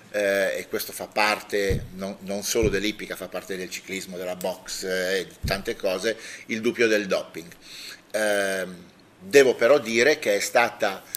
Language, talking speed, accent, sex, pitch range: Italian, 155 wpm, native, male, 100-115 Hz